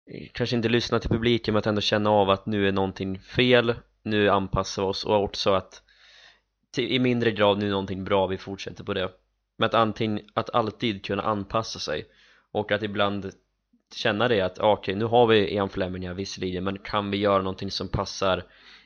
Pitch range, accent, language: 95-115 Hz, native, Swedish